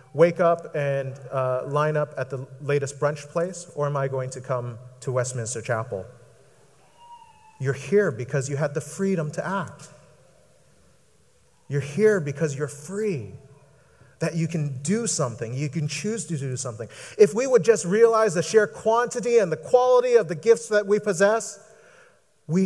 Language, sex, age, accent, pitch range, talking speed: English, male, 30-49, American, 130-200 Hz, 165 wpm